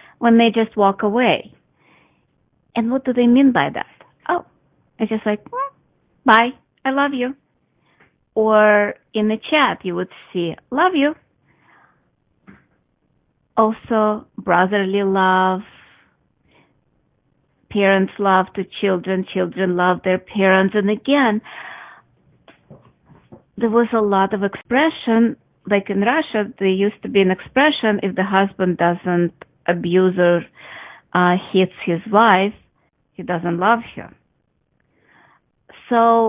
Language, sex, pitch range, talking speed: English, female, 185-235 Hz, 115 wpm